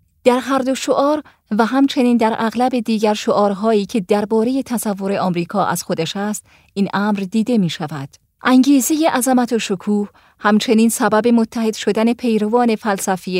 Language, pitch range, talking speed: Persian, 195-245 Hz, 145 wpm